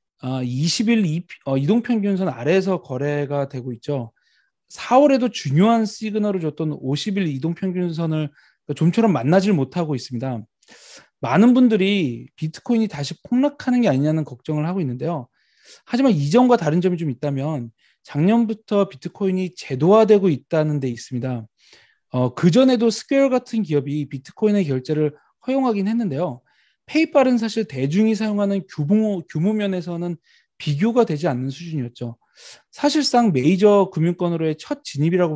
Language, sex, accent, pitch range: Korean, male, native, 150-215 Hz